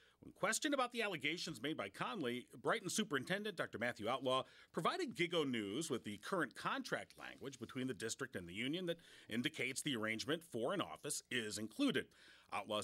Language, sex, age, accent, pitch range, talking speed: English, male, 40-59, American, 120-185 Hz, 175 wpm